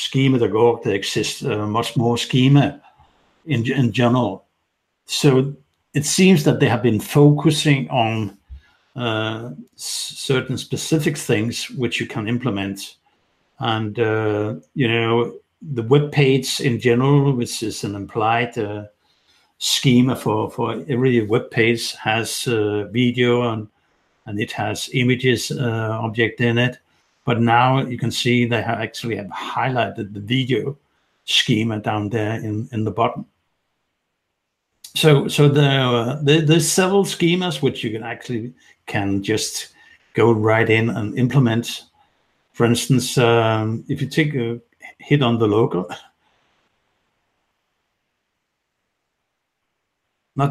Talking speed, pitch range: 130 wpm, 115-135 Hz